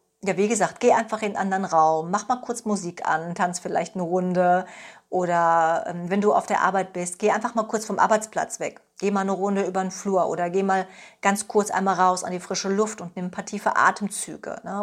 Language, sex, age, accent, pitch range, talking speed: German, female, 40-59, German, 180-215 Hz, 230 wpm